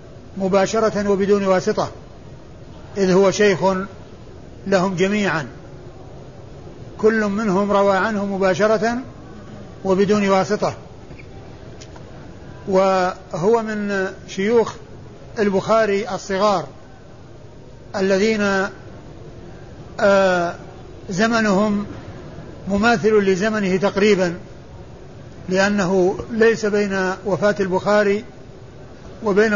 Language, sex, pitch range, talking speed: Arabic, male, 185-210 Hz, 65 wpm